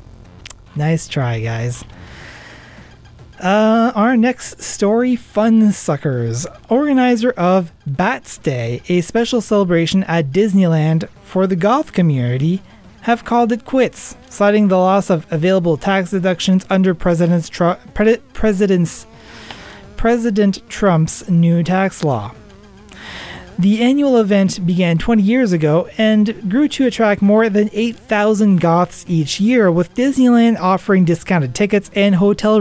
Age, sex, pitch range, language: 30-49, male, 150-210 Hz, English